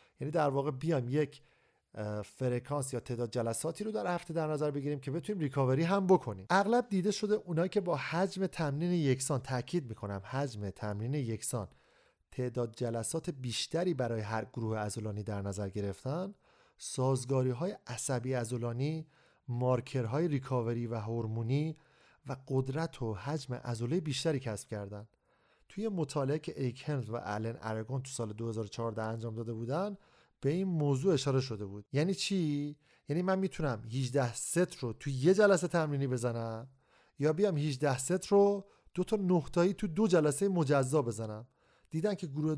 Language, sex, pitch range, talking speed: Persian, male, 120-170 Hz, 150 wpm